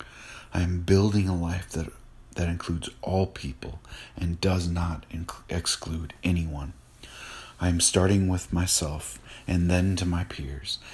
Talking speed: 135 wpm